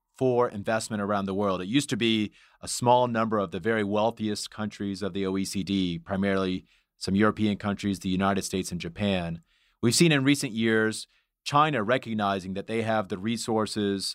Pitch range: 95-115 Hz